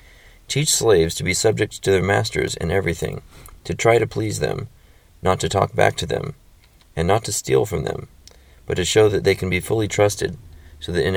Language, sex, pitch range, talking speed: English, male, 85-100 Hz, 210 wpm